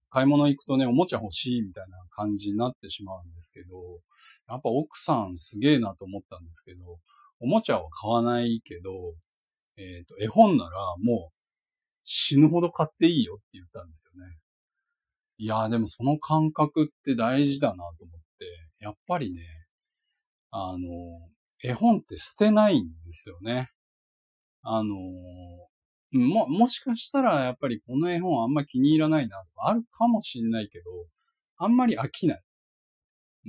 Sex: male